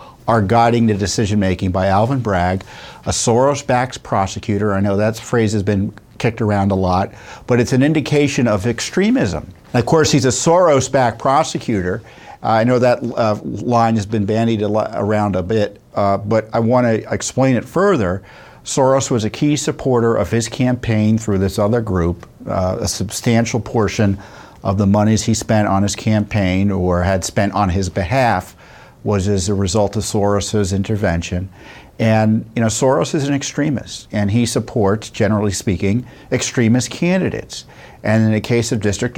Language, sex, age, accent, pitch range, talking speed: English, male, 50-69, American, 100-125 Hz, 165 wpm